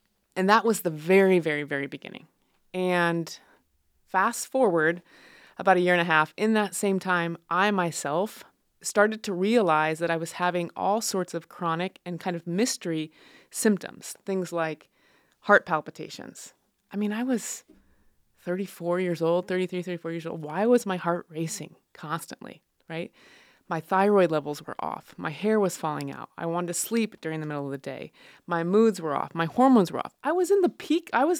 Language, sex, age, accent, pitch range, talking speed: English, female, 20-39, American, 170-210 Hz, 185 wpm